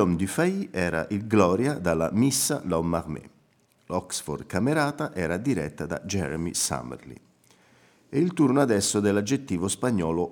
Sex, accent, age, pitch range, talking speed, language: male, native, 50-69, 85-115 Hz, 135 wpm, Italian